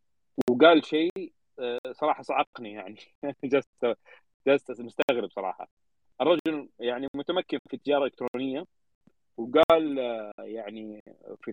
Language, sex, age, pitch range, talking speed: Arabic, male, 30-49, 120-160 Hz, 90 wpm